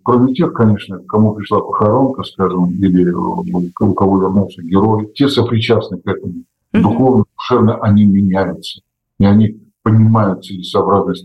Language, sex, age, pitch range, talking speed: Russian, male, 50-69, 95-120 Hz, 130 wpm